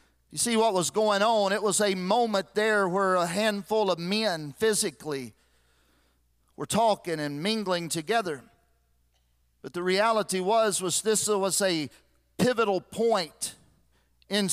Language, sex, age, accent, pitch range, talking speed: English, male, 50-69, American, 170-225 Hz, 135 wpm